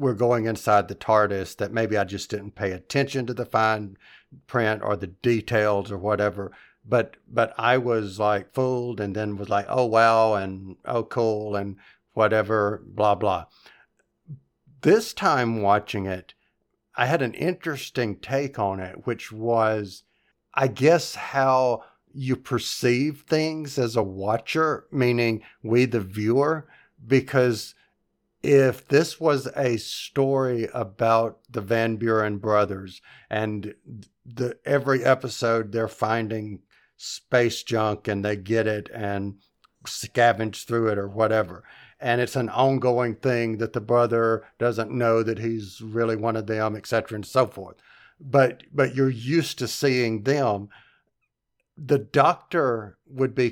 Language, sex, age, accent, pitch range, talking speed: English, male, 50-69, American, 105-130 Hz, 140 wpm